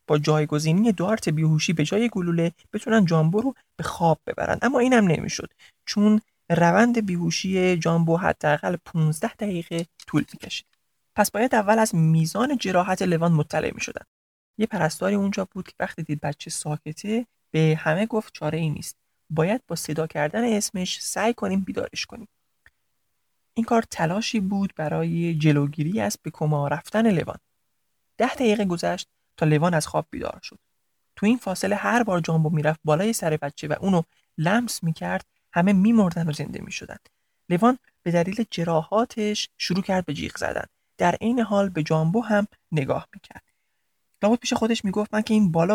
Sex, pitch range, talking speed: male, 160-215 Hz, 160 wpm